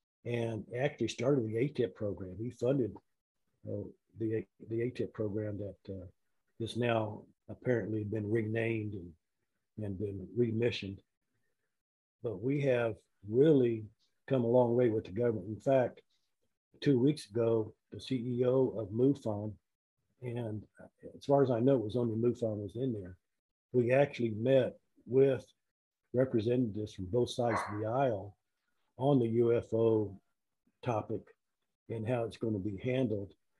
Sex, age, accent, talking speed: male, 50-69, American, 140 wpm